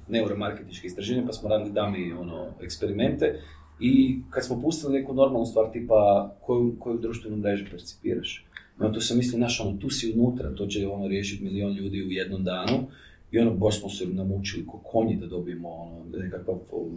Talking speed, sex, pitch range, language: 180 wpm, male, 95-130 Hz, Croatian